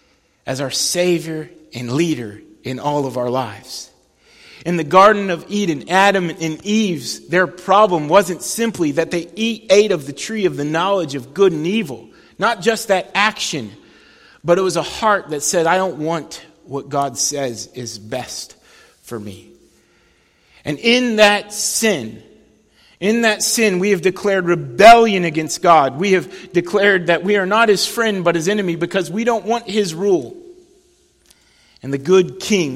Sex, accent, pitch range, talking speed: male, American, 135-190 Hz, 165 wpm